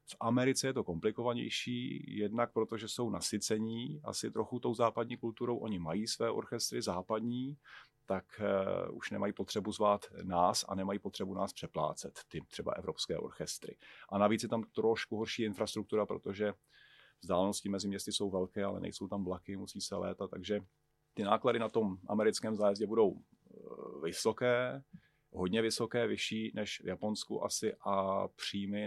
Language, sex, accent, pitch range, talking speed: Czech, male, native, 100-115 Hz, 150 wpm